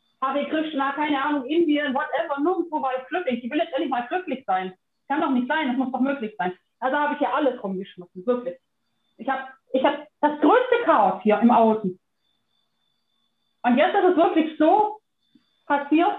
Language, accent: German, German